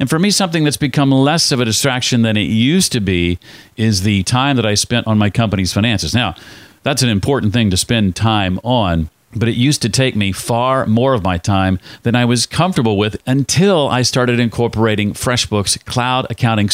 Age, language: 40-59, English